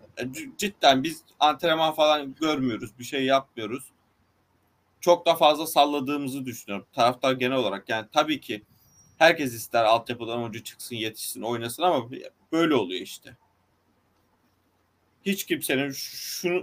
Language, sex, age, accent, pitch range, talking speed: Turkish, male, 40-59, native, 120-175 Hz, 120 wpm